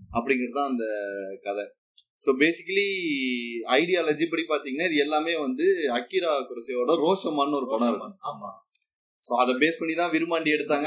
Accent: native